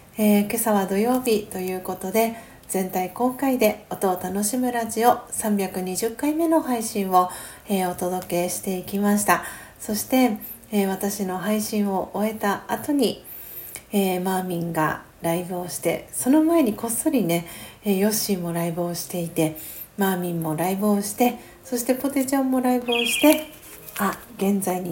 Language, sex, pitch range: Japanese, female, 175-215 Hz